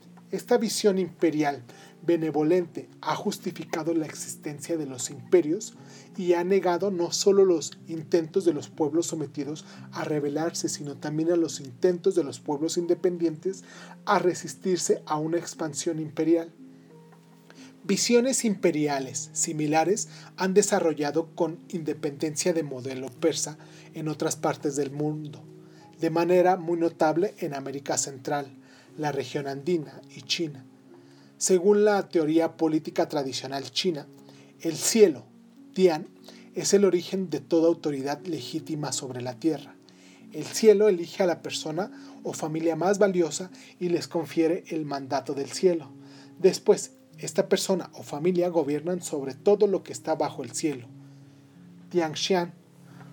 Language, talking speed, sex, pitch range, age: Spanish, 130 wpm, male, 150-180 Hz, 30-49